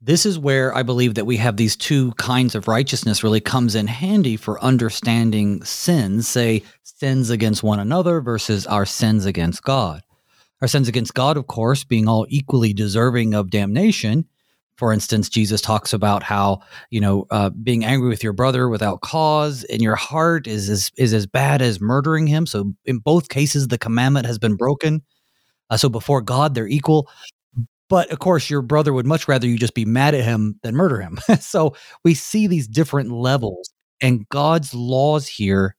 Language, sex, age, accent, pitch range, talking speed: English, male, 30-49, American, 110-145 Hz, 185 wpm